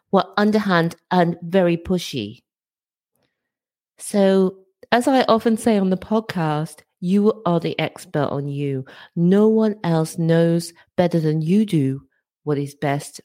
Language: English